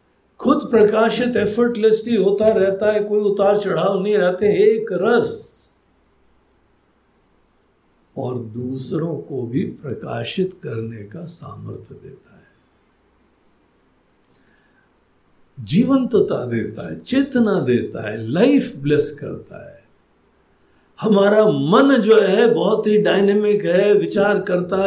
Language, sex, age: Hindi, male, 60-79